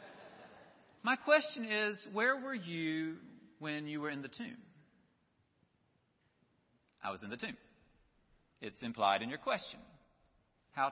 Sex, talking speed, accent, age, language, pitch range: male, 125 wpm, American, 40-59, English, 175-245 Hz